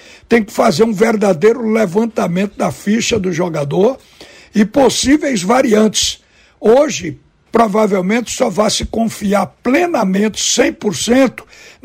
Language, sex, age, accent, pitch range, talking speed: Portuguese, male, 60-79, Brazilian, 190-230 Hz, 105 wpm